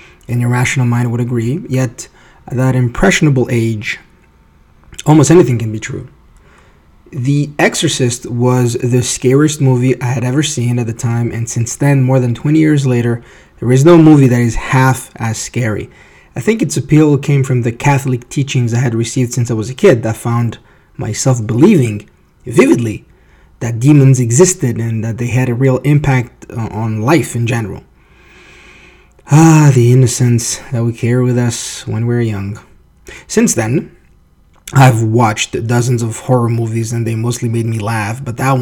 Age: 20-39